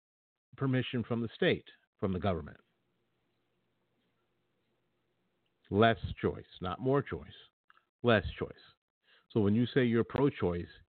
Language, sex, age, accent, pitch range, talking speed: English, male, 50-69, American, 95-120 Hz, 115 wpm